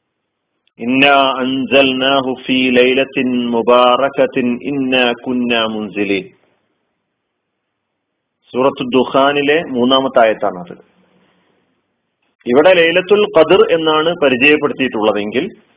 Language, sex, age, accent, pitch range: Malayalam, male, 40-59, native, 125-160 Hz